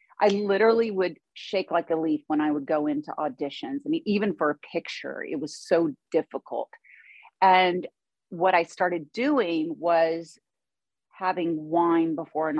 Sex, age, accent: female, 40-59, American